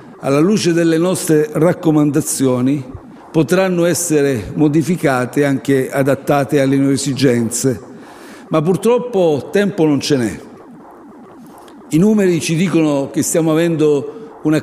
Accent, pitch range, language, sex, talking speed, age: native, 140-175 Hz, Italian, male, 115 wpm, 60-79